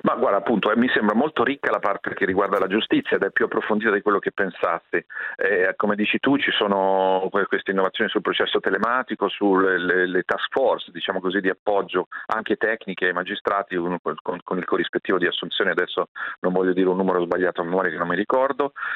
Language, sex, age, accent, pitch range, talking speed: Italian, male, 40-59, native, 85-105 Hz, 200 wpm